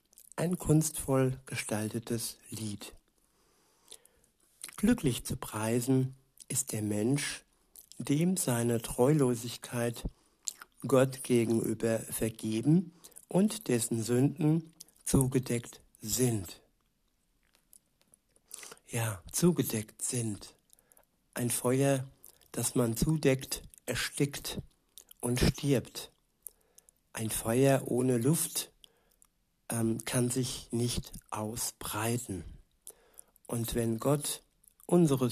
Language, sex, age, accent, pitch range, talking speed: German, male, 60-79, German, 115-135 Hz, 75 wpm